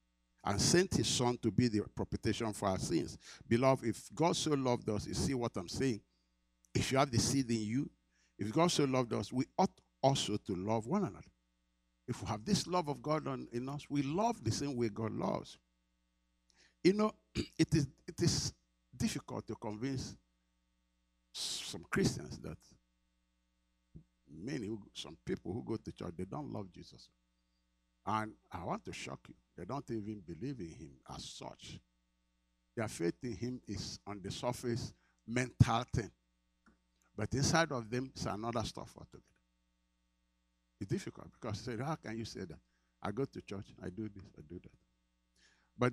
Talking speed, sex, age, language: 170 wpm, male, 60-79, English